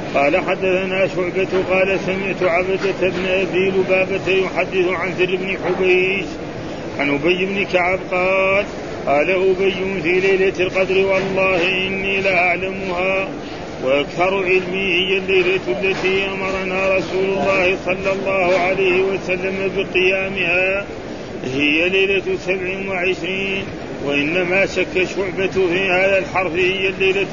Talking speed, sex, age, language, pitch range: 115 wpm, male, 40-59, Arabic, 180-190 Hz